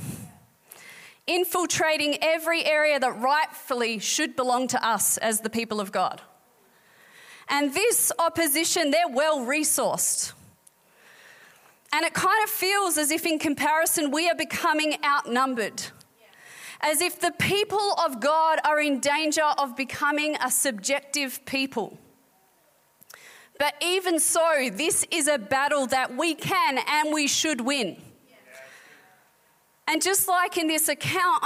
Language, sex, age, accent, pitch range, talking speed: English, female, 30-49, Australian, 270-325 Hz, 130 wpm